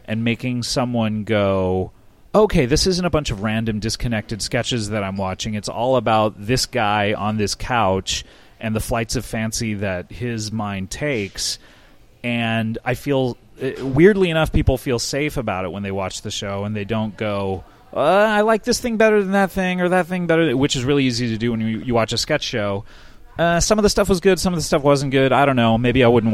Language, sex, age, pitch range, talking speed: English, male, 30-49, 100-130 Hz, 220 wpm